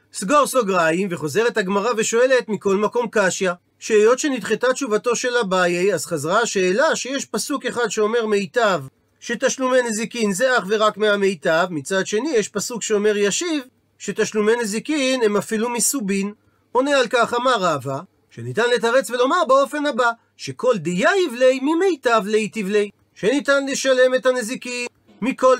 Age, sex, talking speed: 40-59, male, 140 wpm